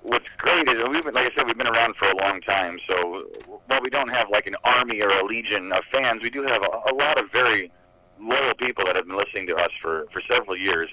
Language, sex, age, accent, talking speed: English, male, 40-59, American, 265 wpm